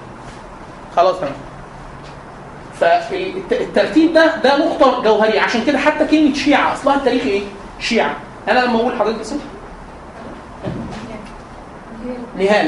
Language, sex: Arabic, male